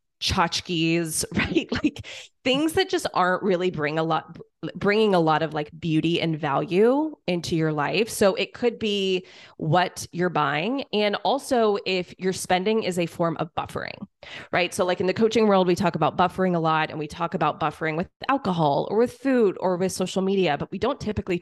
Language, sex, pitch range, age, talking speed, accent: English, female, 160-195 Hz, 20-39, 195 wpm, American